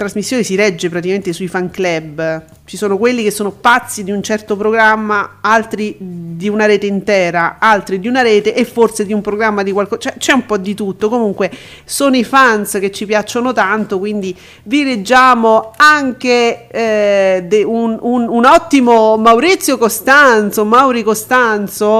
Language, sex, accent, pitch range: Italian, female, native, 200-250 Hz